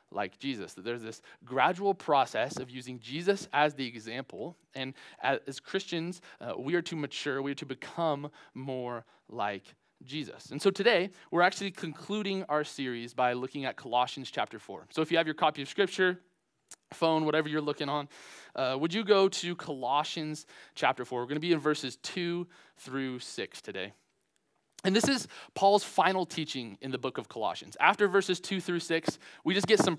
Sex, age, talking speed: male, 20-39, 185 wpm